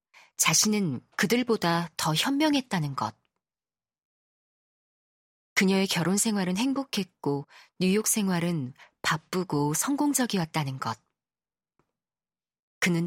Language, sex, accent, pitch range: Korean, female, native, 155-210 Hz